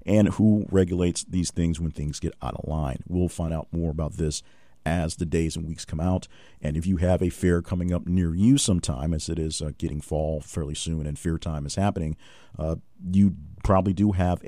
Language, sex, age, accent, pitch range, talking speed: English, male, 50-69, American, 80-120 Hz, 220 wpm